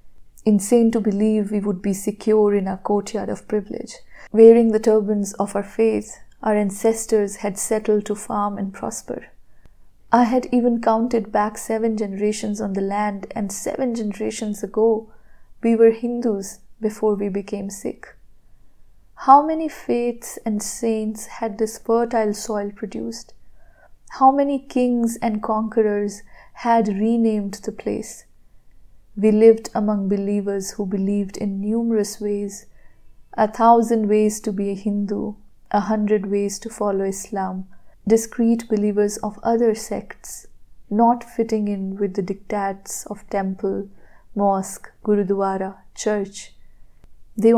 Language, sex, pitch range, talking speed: Hindi, female, 205-225 Hz, 130 wpm